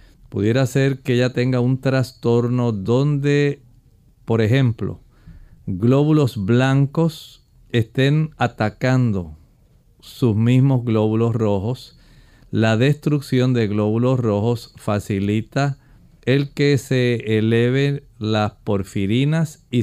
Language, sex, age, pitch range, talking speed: Spanish, male, 50-69, 110-135 Hz, 95 wpm